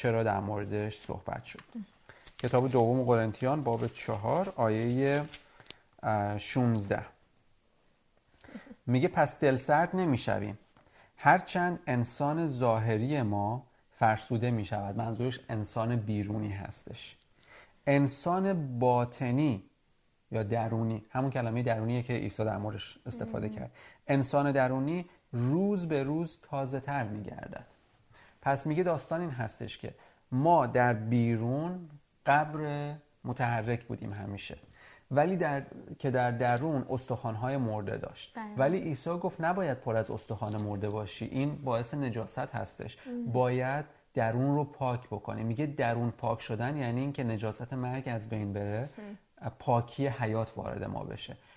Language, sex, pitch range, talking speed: Persian, male, 110-145 Hz, 125 wpm